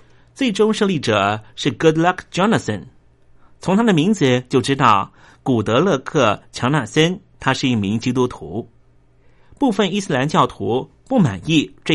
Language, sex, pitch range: Chinese, male, 110-155 Hz